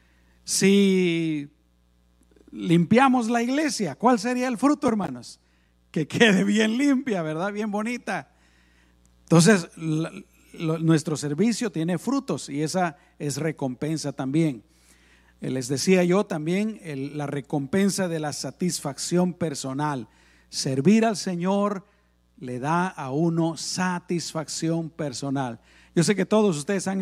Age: 50-69